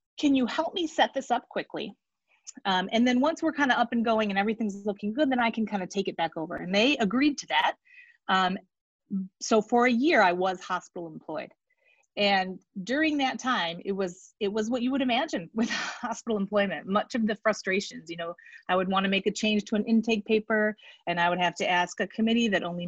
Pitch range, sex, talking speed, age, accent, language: 185-255 Hz, female, 230 wpm, 30-49, American, English